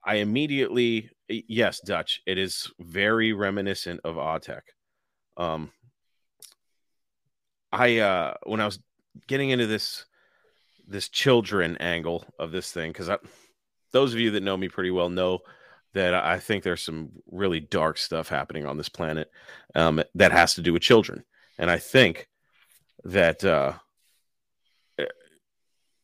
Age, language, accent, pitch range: 30-49, English, American, 90-110 Hz